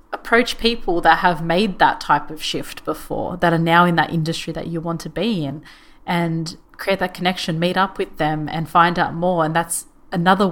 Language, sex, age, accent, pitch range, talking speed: English, female, 30-49, Australian, 160-180 Hz, 210 wpm